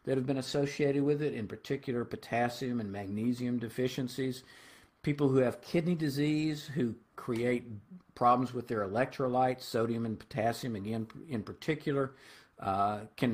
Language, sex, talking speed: English, male, 140 wpm